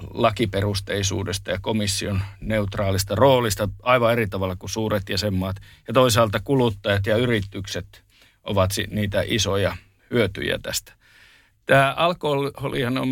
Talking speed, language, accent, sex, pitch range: 110 wpm, Finnish, native, male, 100-115 Hz